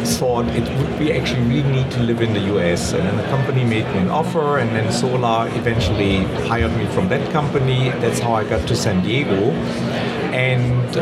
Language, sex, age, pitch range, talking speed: English, male, 60-79, 100-130 Hz, 200 wpm